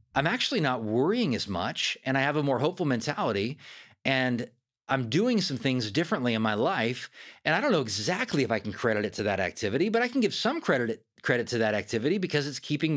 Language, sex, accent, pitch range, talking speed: English, male, American, 125-170 Hz, 220 wpm